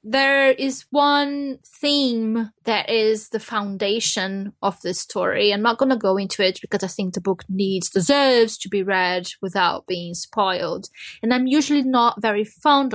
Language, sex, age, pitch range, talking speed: English, female, 20-39, 205-265 Hz, 170 wpm